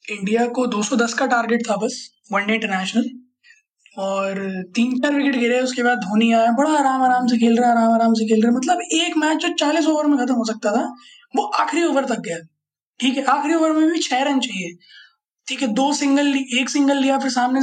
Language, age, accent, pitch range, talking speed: Hindi, 20-39, native, 220-285 Hz, 215 wpm